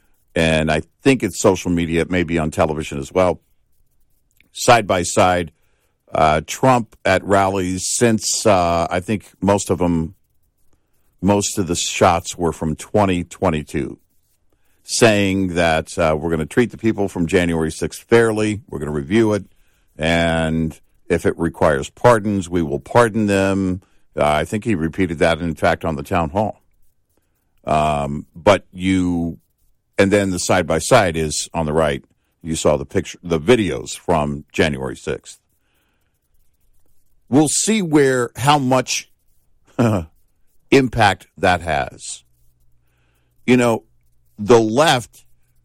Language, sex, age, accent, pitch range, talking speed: English, male, 50-69, American, 80-100 Hz, 140 wpm